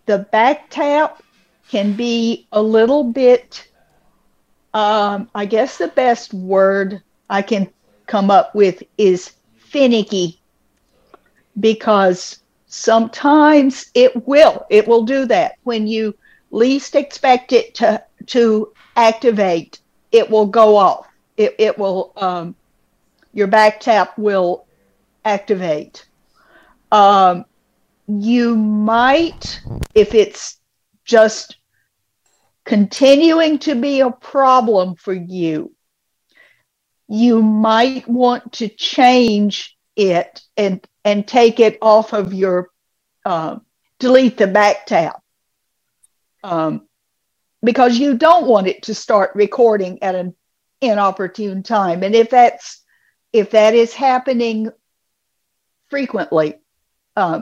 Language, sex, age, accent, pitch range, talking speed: English, female, 50-69, American, 205-255 Hz, 110 wpm